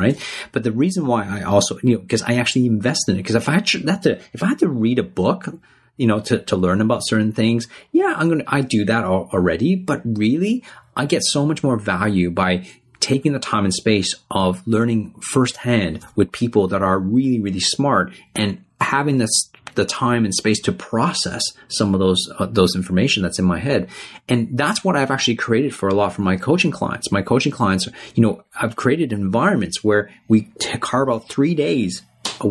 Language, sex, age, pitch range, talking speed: English, male, 30-49, 105-135 Hz, 210 wpm